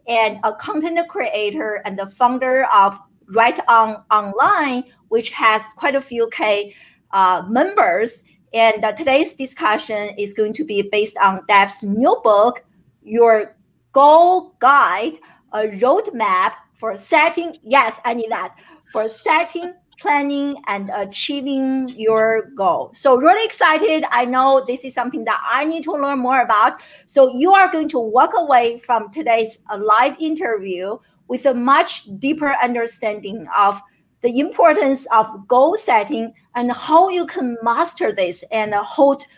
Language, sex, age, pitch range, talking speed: English, female, 50-69, 215-280 Hz, 145 wpm